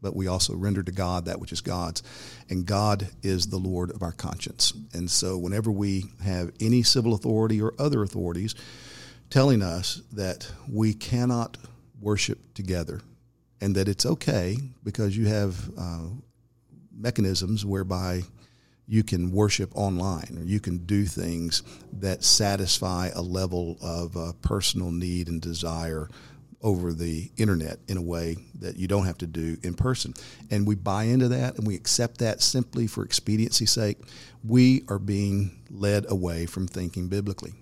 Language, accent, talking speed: English, American, 160 wpm